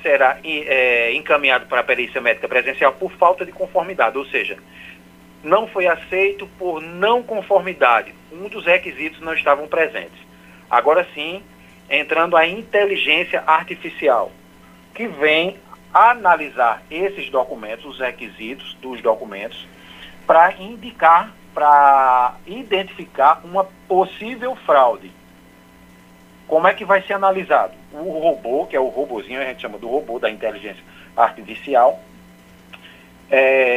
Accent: Brazilian